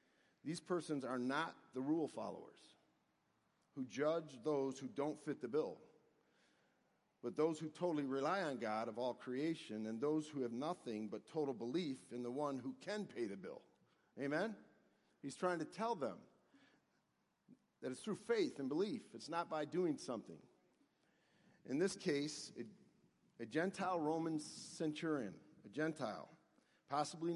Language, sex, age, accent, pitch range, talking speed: English, male, 50-69, American, 135-170 Hz, 150 wpm